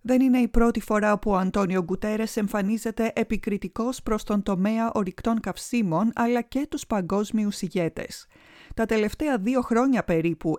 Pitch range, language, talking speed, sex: 190-245 Hz, Greek, 145 wpm, female